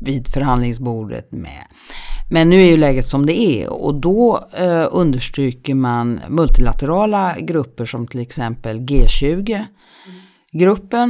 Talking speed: 120 wpm